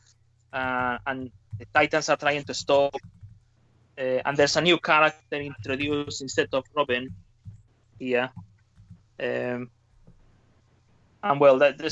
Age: 20-39